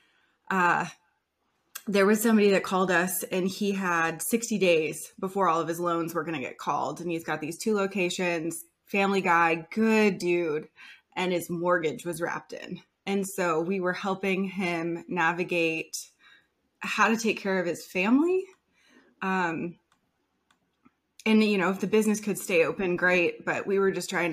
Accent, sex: American, female